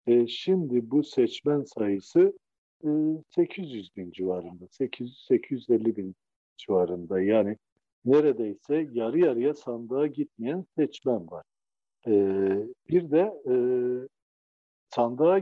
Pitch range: 105-150 Hz